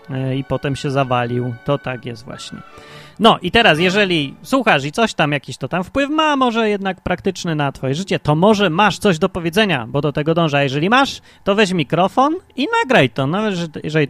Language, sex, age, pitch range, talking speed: Polish, male, 30-49, 135-190 Hz, 205 wpm